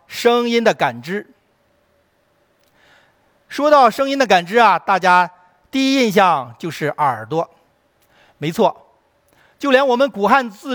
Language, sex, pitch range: Chinese, male, 165-240 Hz